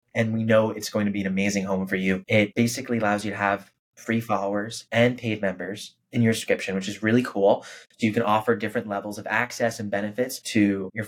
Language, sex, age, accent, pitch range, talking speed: English, male, 20-39, American, 100-115 Hz, 225 wpm